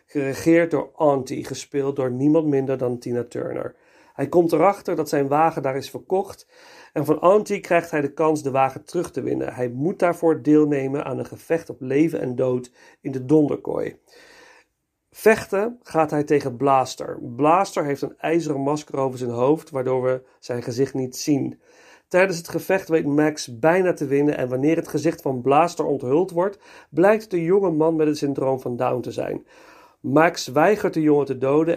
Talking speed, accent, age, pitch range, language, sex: 185 wpm, Dutch, 40-59, 135-175 Hz, Dutch, male